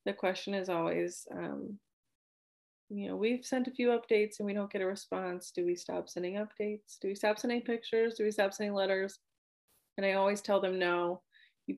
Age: 30-49